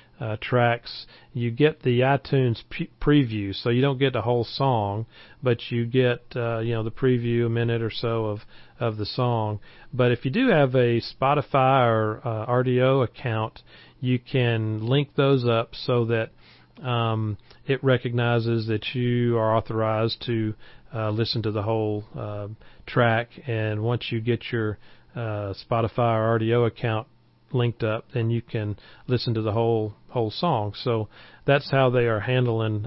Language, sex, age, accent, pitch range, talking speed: English, male, 40-59, American, 110-125 Hz, 165 wpm